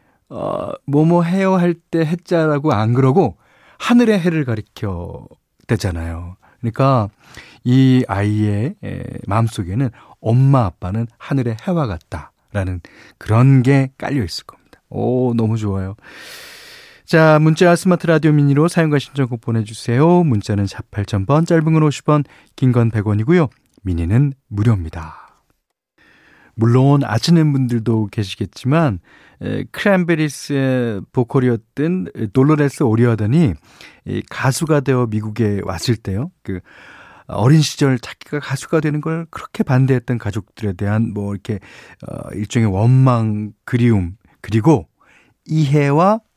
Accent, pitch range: native, 105-150 Hz